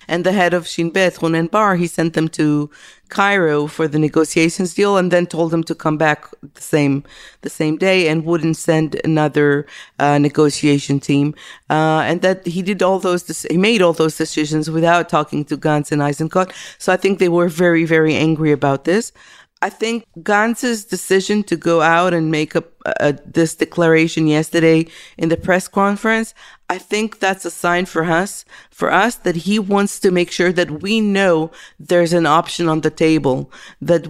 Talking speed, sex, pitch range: 190 wpm, female, 155-190 Hz